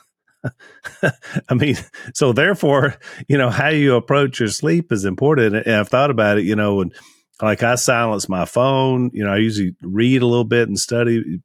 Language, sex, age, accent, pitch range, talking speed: English, male, 40-59, American, 90-115 Hz, 190 wpm